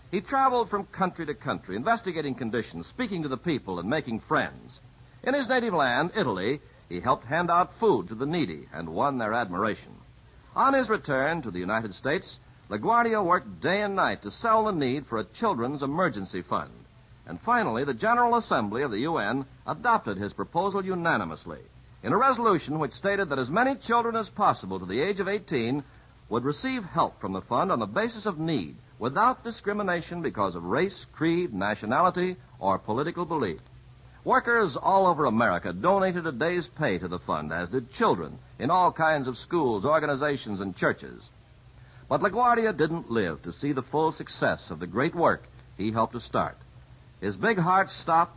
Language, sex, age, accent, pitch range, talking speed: English, male, 60-79, American, 125-200 Hz, 180 wpm